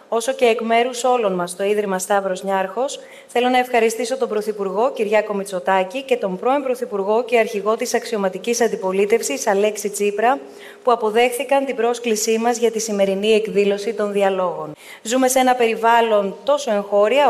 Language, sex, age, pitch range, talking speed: Greek, female, 30-49, 205-245 Hz, 155 wpm